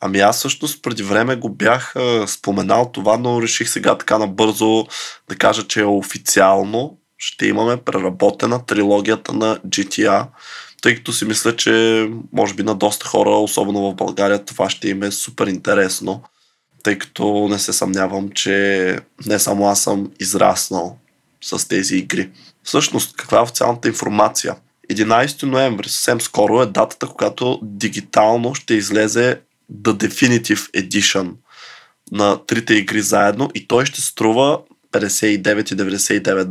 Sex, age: male, 20-39